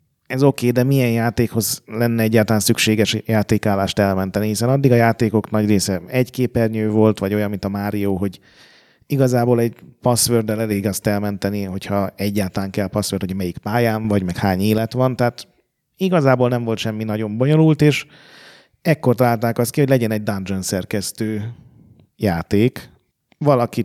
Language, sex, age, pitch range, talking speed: Hungarian, male, 30-49, 105-130 Hz, 160 wpm